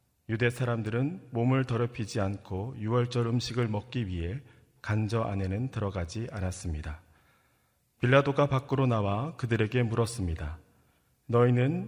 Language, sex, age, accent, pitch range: Korean, male, 40-59, native, 105-130 Hz